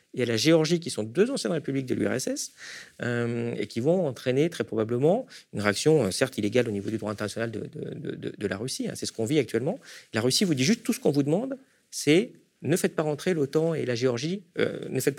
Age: 40-59